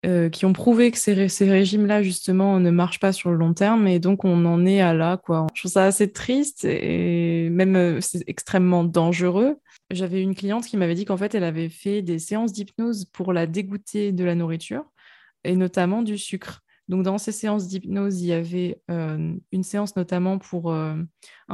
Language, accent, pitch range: French, French, 180-210 Hz